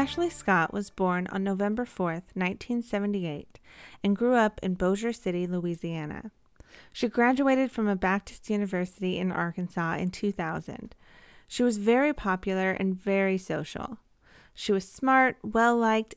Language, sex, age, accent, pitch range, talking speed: English, female, 30-49, American, 180-235 Hz, 135 wpm